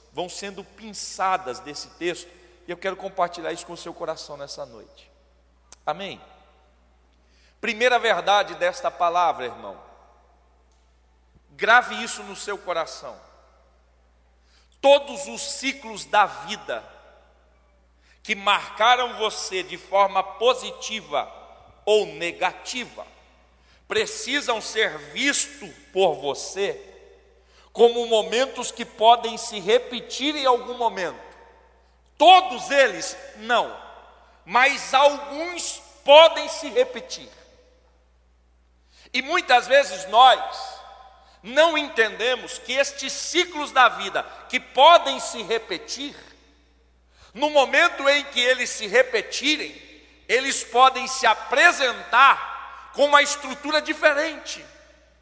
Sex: male